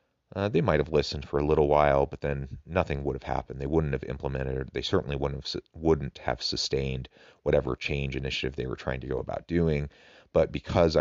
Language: English